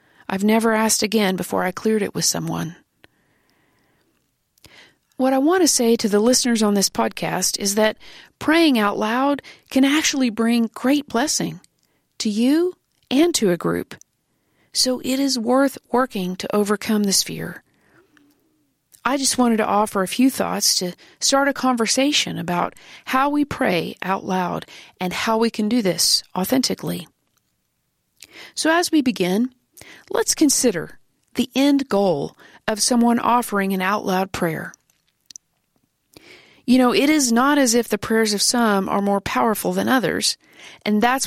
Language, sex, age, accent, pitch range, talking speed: English, female, 40-59, American, 210-275 Hz, 155 wpm